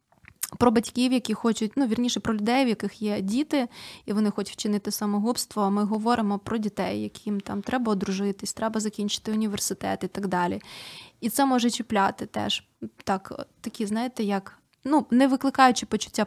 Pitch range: 205-240 Hz